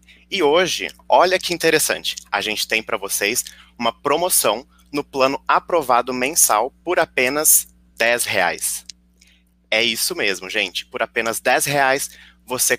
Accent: Brazilian